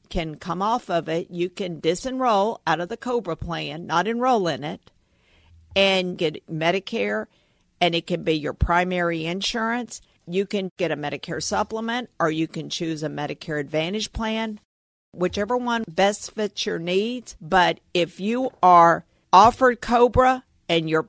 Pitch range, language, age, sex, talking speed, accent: 160-215 Hz, English, 50-69, female, 155 wpm, American